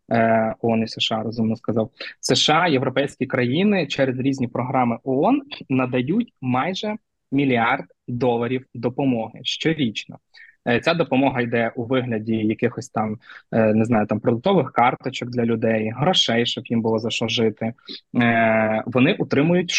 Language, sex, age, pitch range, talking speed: Ukrainian, male, 20-39, 115-140 Hz, 125 wpm